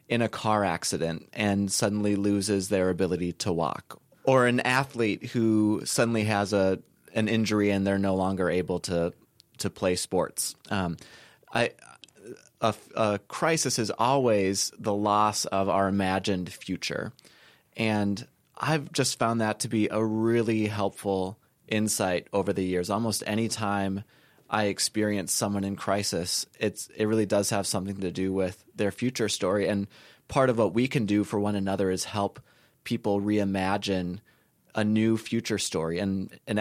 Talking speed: 155 wpm